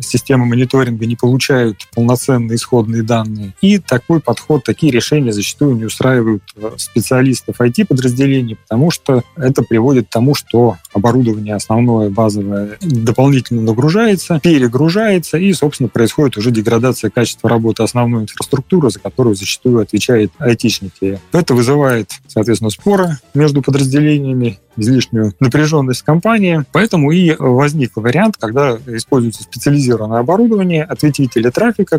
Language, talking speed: Russian, 120 wpm